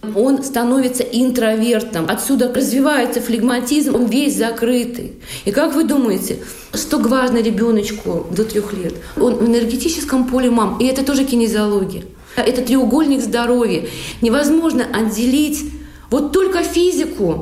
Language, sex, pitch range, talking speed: Russian, female, 215-275 Hz, 125 wpm